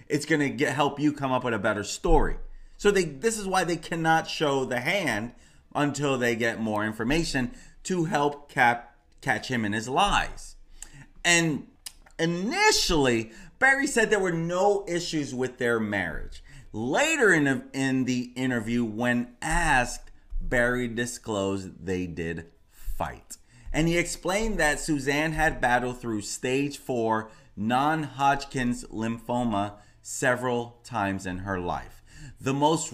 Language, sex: English, male